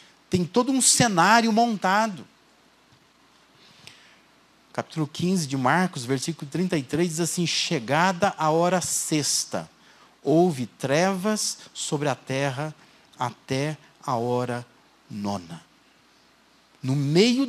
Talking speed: 95 wpm